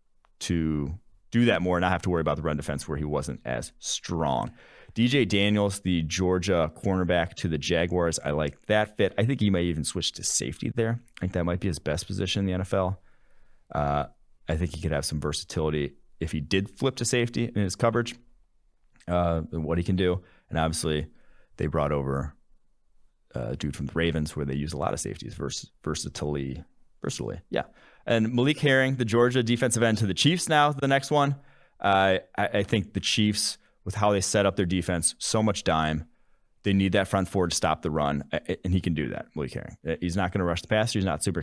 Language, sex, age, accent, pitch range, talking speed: English, male, 30-49, American, 80-105 Hz, 215 wpm